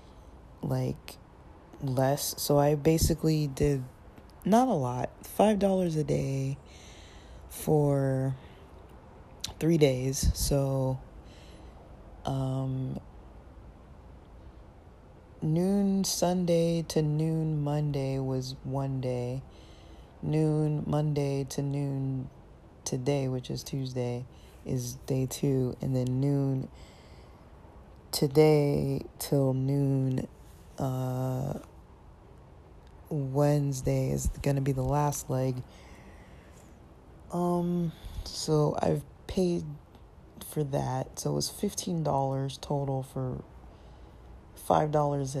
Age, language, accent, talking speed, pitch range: 20-39, English, American, 85 wpm, 125-150 Hz